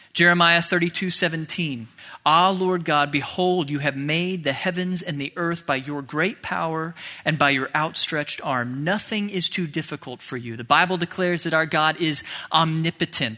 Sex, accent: male, American